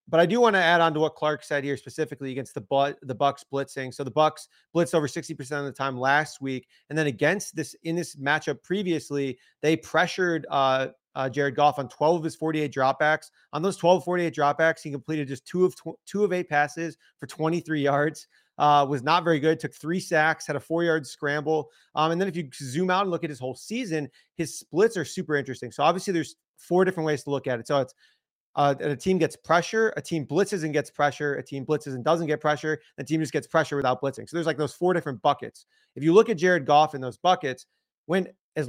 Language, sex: English, male